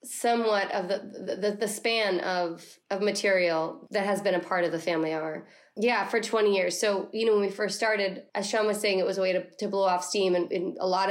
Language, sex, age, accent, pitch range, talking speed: English, female, 20-39, American, 175-210 Hz, 250 wpm